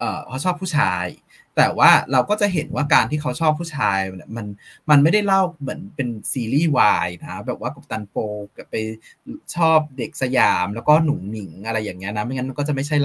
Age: 20-39